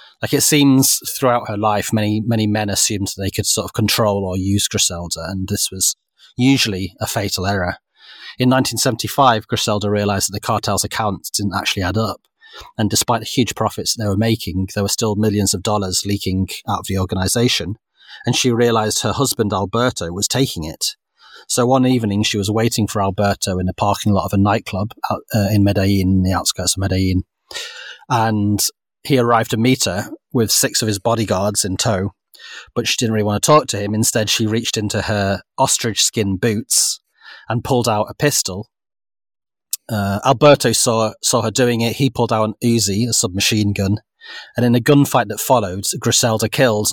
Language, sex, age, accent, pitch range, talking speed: English, male, 30-49, British, 100-115 Hz, 190 wpm